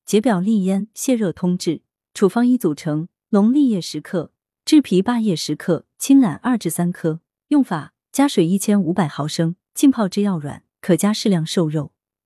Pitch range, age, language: 165-220 Hz, 20-39, Chinese